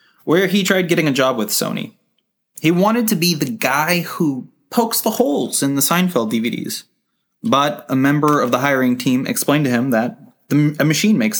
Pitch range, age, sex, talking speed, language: 140-195 Hz, 20-39, male, 195 wpm, English